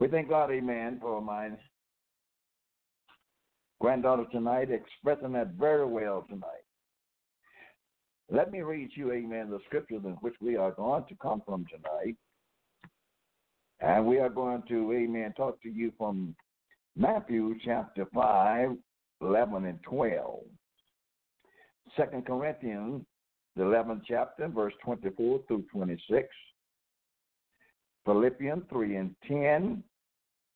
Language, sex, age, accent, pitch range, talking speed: English, male, 60-79, American, 110-150 Hz, 115 wpm